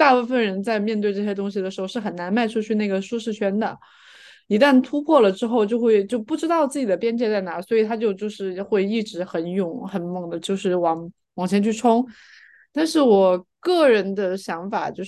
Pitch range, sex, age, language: 185-235 Hz, female, 20-39, Chinese